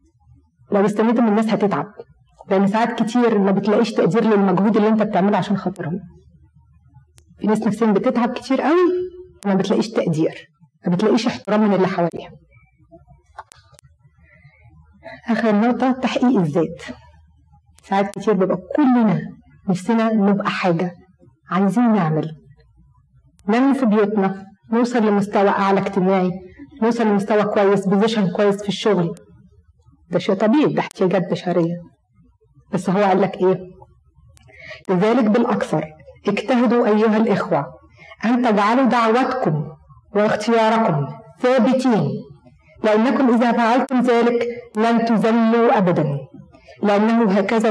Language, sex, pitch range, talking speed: Arabic, female, 190-230 Hz, 110 wpm